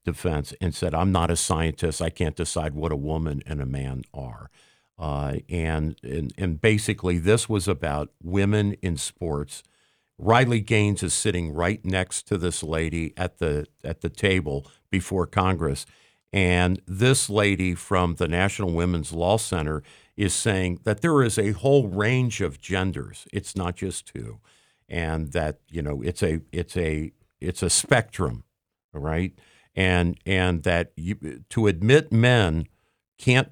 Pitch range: 80-100 Hz